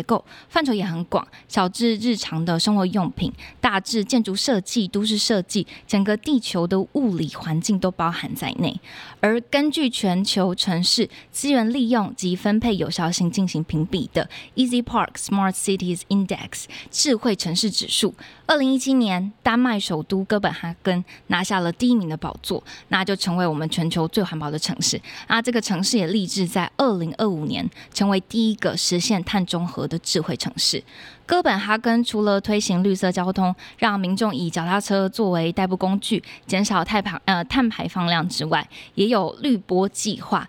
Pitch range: 180-225 Hz